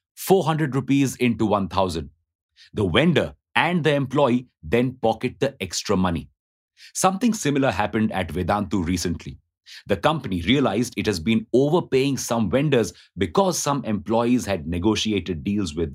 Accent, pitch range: Indian, 95-135 Hz